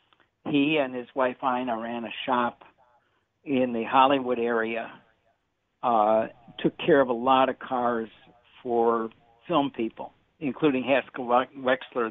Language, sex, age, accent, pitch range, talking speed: English, male, 60-79, American, 120-150 Hz, 130 wpm